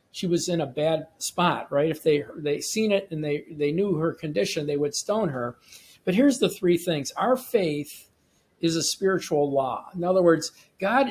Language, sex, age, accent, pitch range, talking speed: English, male, 50-69, American, 145-190 Hz, 200 wpm